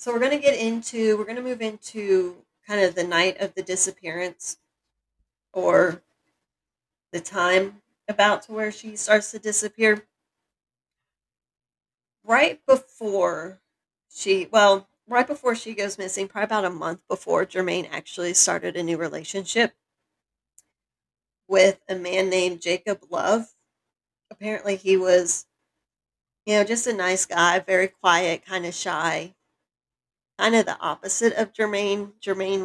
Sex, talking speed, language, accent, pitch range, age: female, 140 wpm, English, American, 180-210 Hz, 40-59